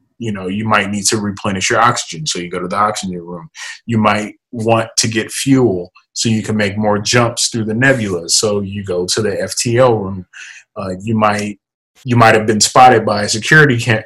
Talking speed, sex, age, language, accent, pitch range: 210 wpm, male, 20-39, English, American, 100-115 Hz